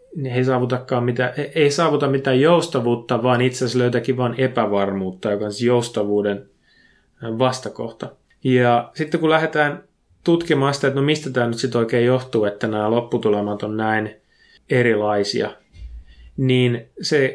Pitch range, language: 110-130 Hz, Finnish